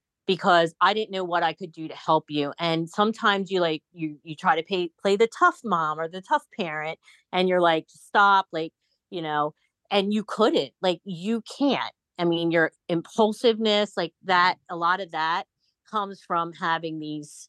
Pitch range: 160-205 Hz